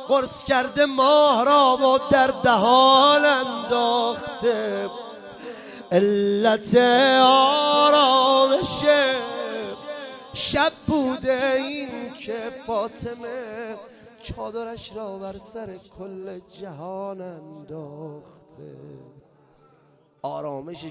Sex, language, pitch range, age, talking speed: male, Persian, 140-220 Hz, 30-49, 70 wpm